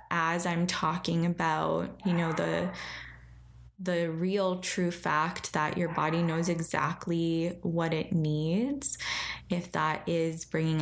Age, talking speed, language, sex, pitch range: 10-29, 130 wpm, English, female, 155-185 Hz